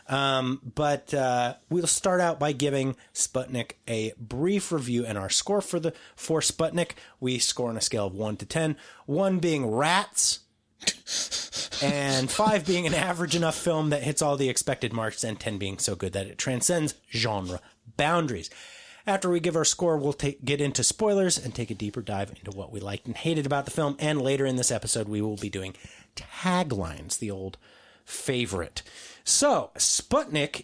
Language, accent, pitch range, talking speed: English, American, 110-160 Hz, 180 wpm